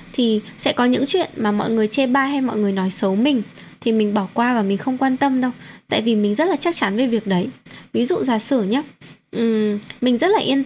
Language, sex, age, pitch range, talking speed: Vietnamese, female, 10-29, 210-270 Hz, 255 wpm